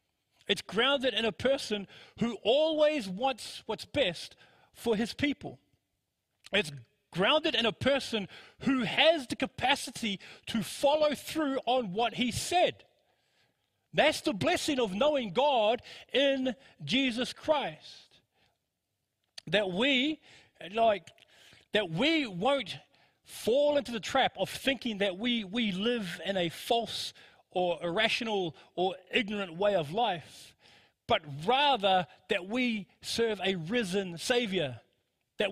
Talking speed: 125 wpm